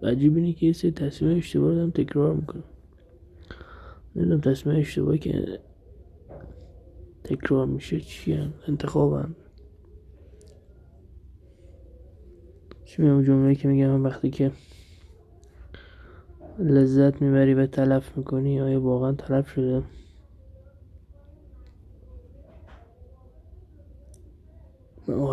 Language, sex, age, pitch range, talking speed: Persian, male, 20-39, 80-135 Hz, 95 wpm